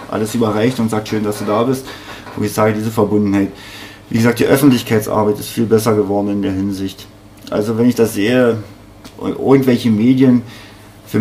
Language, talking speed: German, 175 wpm